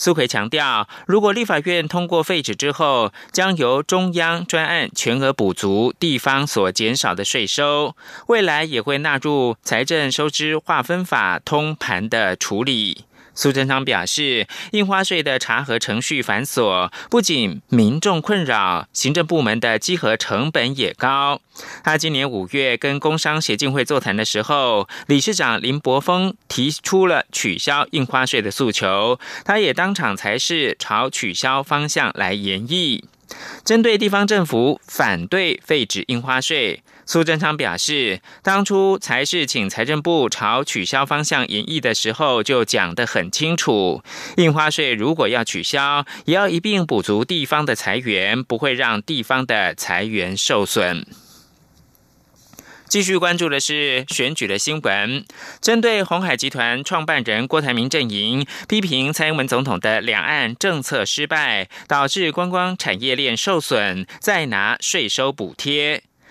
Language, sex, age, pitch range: German, male, 20-39, 130-175 Hz